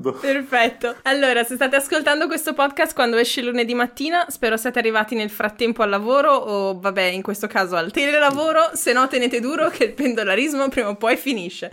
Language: Italian